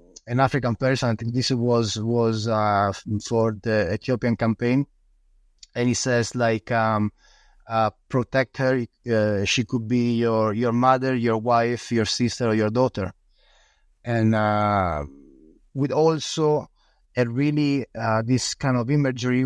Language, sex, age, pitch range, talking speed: English, male, 30-49, 110-130 Hz, 140 wpm